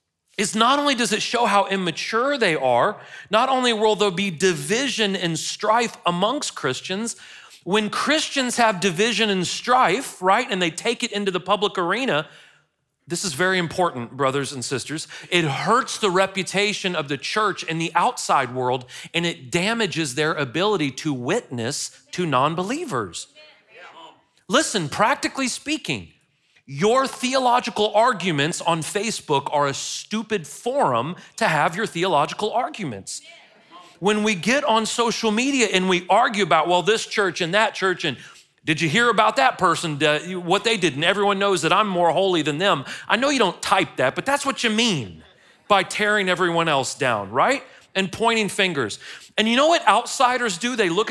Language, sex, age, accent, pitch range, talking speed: English, male, 40-59, American, 165-225 Hz, 165 wpm